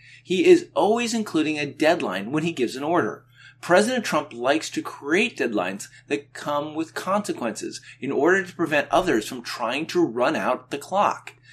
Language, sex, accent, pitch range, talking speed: English, male, American, 125-185 Hz, 170 wpm